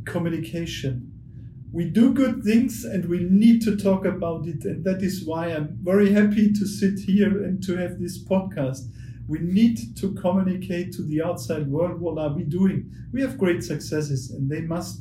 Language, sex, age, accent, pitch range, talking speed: English, male, 40-59, German, 155-190 Hz, 185 wpm